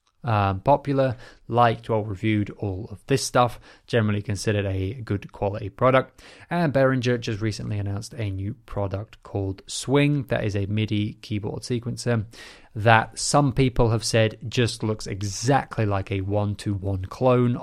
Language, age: English, 20-39